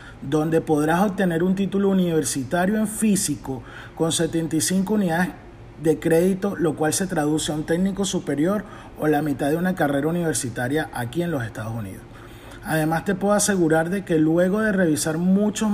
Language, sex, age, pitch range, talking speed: Spanish, male, 30-49, 120-170 Hz, 165 wpm